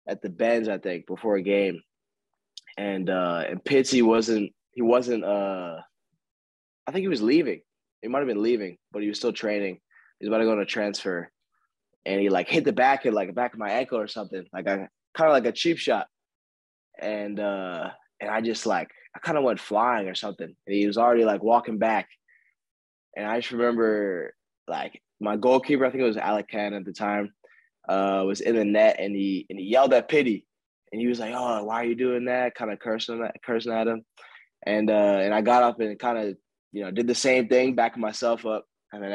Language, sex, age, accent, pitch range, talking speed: English, male, 20-39, American, 100-120 Hz, 225 wpm